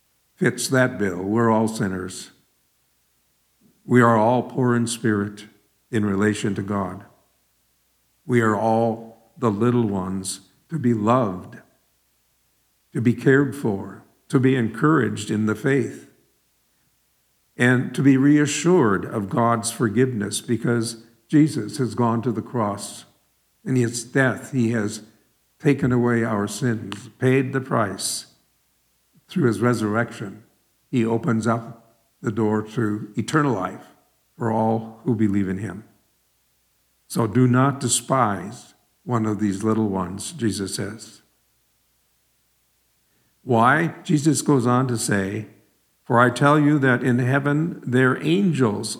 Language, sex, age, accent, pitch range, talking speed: English, male, 50-69, American, 105-130 Hz, 125 wpm